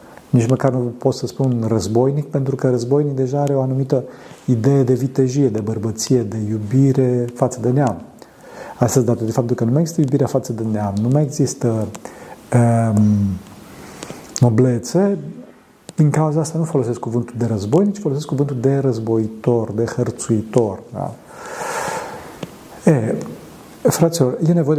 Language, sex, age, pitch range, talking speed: Romanian, male, 40-59, 115-140 Hz, 145 wpm